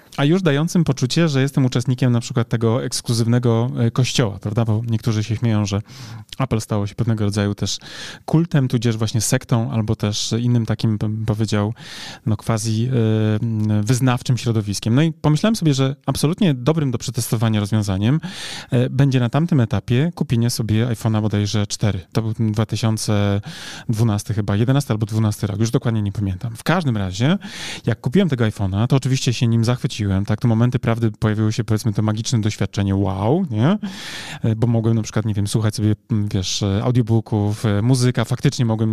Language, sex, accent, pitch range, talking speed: Polish, male, native, 110-140 Hz, 165 wpm